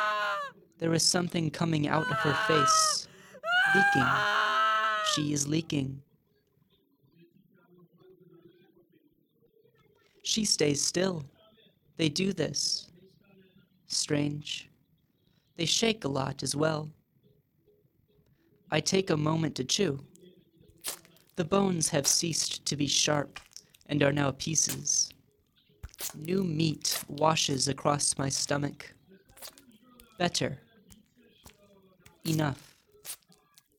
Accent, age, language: American, 30-49, English